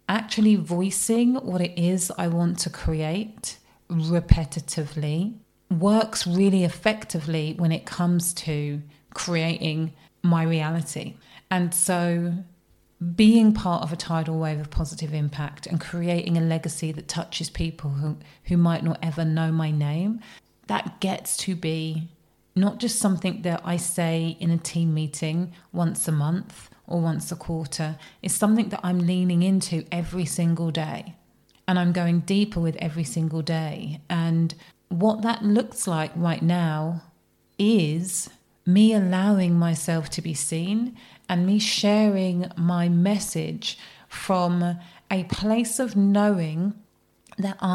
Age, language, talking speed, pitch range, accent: 30-49, English, 135 wpm, 165-195 Hz, British